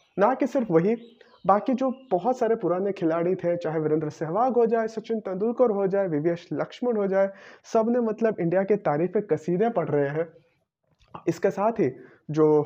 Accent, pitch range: native, 170-230 Hz